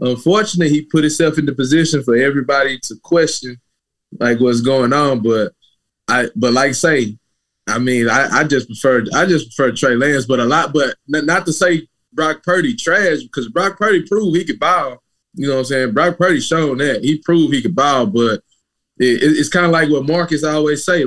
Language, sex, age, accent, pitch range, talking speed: English, male, 20-39, American, 125-160 Hz, 215 wpm